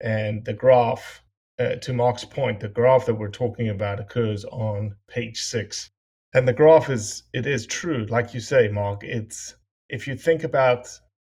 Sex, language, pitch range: male, English, 100-120 Hz